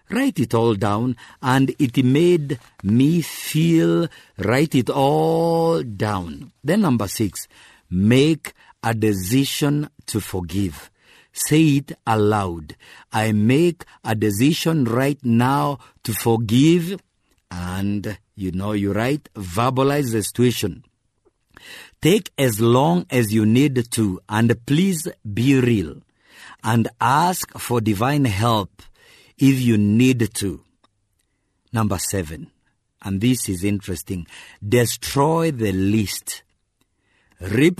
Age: 50-69